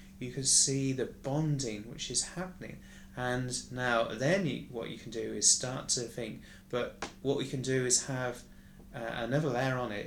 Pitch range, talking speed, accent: 110-140 Hz, 185 wpm, British